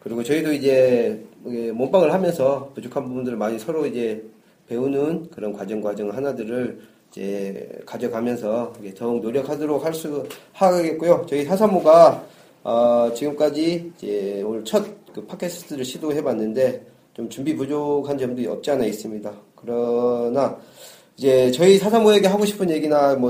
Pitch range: 115-150 Hz